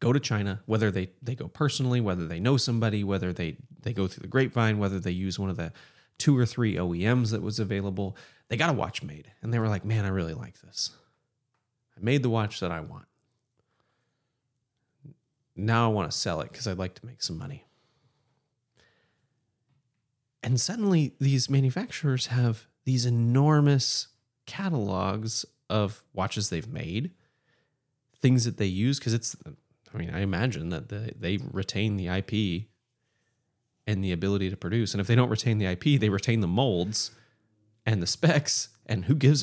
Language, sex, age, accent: English, male, 30-49, American